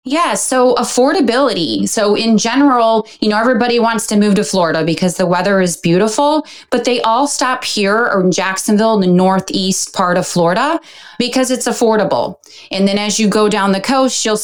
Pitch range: 170-220 Hz